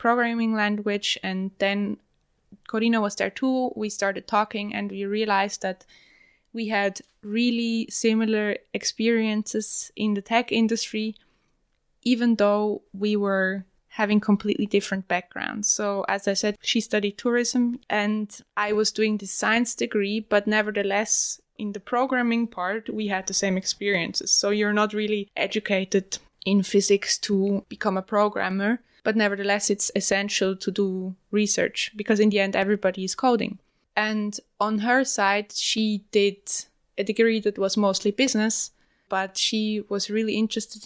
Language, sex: English, female